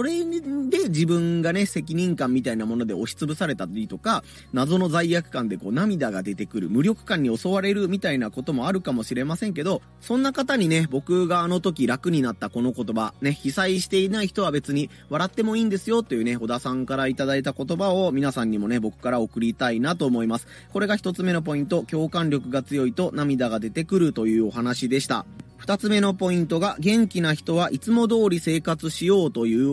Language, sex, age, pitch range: Japanese, male, 30-49, 135-220 Hz